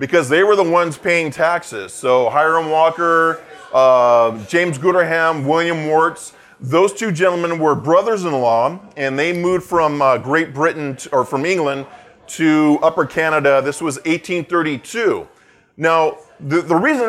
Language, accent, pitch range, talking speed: English, American, 135-170 Hz, 145 wpm